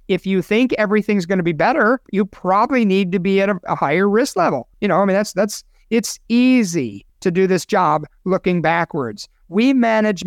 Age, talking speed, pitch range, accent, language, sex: 50-69, 200 wpm, 180-225 Hz, American, English, male